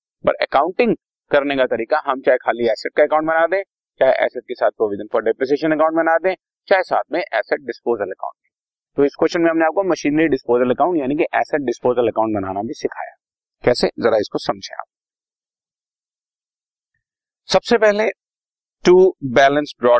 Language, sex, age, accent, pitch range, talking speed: Hindi, male, 30-49, native, 125-160 Hz, 105 wpm